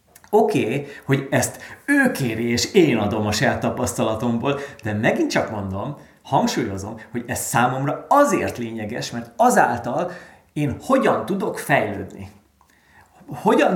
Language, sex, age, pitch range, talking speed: Hungarian, male, 30-49, 105-135 Hz, 120 wpm